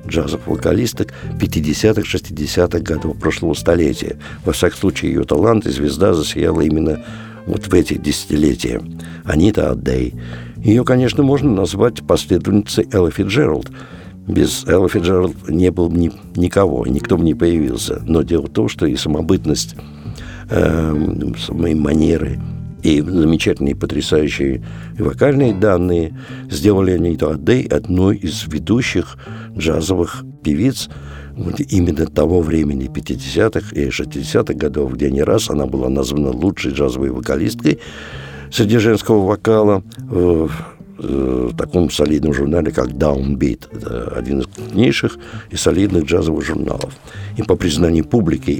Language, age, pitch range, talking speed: Russian, 60-79, 75-105 Hz, 125 wpm